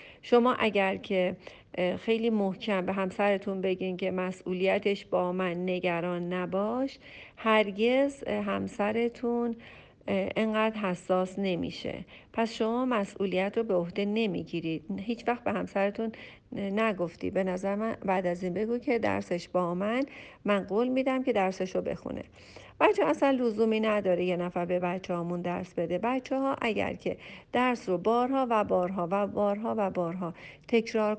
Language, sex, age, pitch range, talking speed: Persian, female, 50-69, 185-235 Hz, 140 wpm